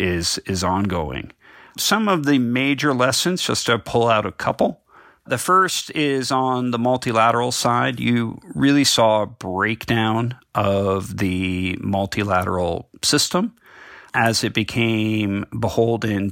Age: 40-59